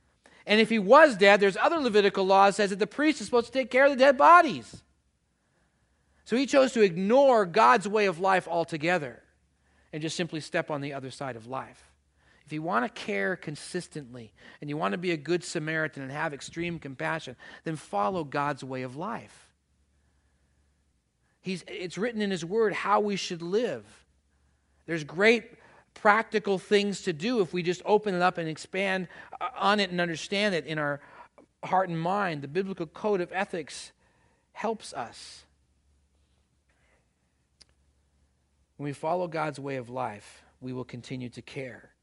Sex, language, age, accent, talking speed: male, English, 40-59, American, 170 wpm